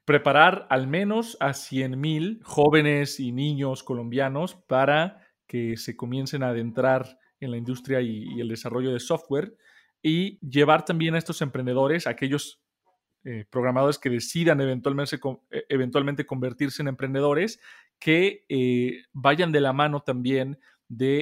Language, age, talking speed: Spanish, 40-59, 135 wpm